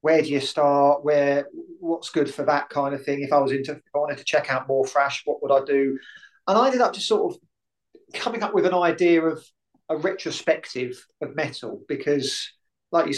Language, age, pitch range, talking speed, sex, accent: English, 30-49, 130-160 Hz, 220 wpm, male, British